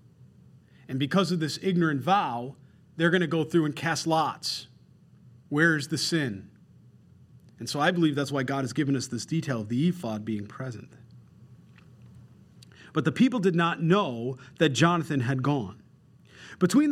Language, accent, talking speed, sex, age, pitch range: English, American, 165 wpm, male, 40-59, 145-185 Hz